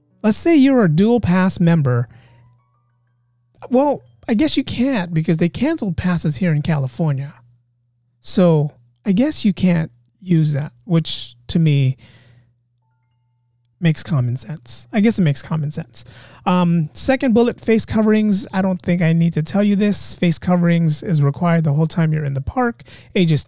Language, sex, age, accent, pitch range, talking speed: English, male, 30-49, American, 130-210 Hz, 165 wpm